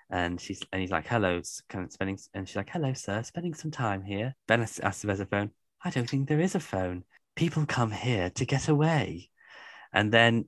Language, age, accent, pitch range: English, 10-29, British, 90-115 Hz